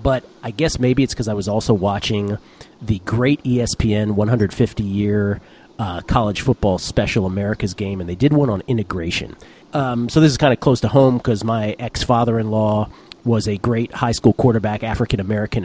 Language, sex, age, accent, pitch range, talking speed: English, male, 40-59, American, 105-135 Hz, 170 wpm